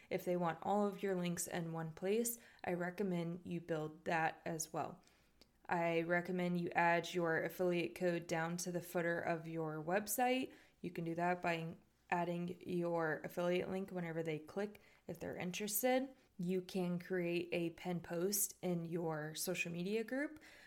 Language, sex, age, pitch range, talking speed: English, female, 20-39, 170-195 Hz, 165 wpm